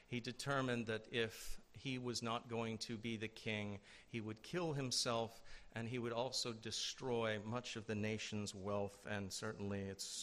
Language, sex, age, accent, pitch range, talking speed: English, male, 50-69, American, 115-135 Hz, 170 wpm